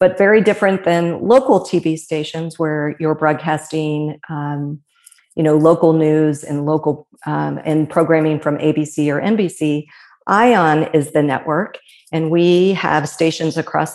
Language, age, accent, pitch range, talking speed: English, 50-69, American, 155-175 Hz, 140 wpm